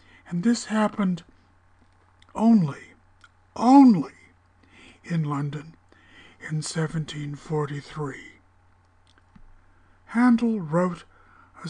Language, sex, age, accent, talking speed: English, male, 60-79, American, 60 wpm